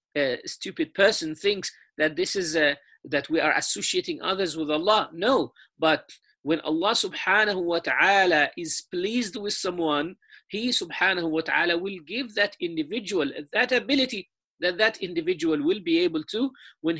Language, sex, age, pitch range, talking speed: English, male, 50-69, 165-225 Hz, 155 wpm